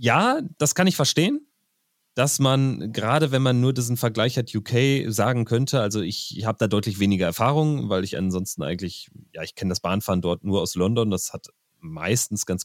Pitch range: 95-120 Hz